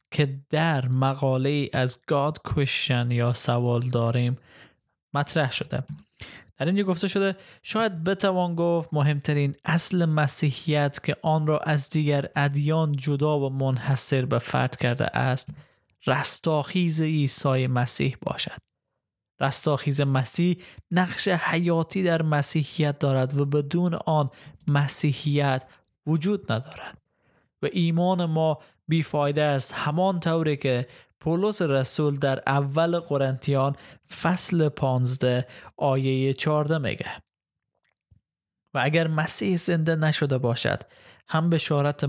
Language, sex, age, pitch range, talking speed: Persian, male, 20-39, 135-165 Hz, 110 wpm